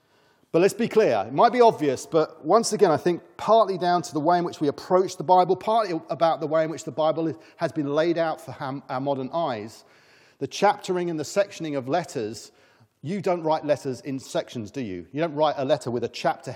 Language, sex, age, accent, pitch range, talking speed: English, male, 40-59, British, 140-180 Hz, 230 wpm